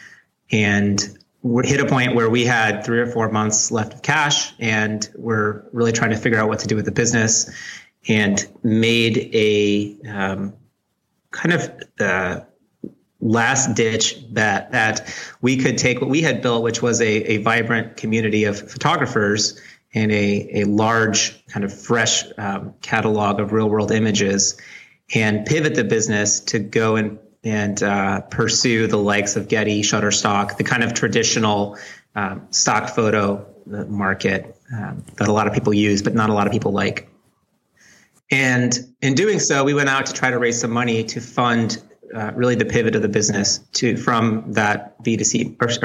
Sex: male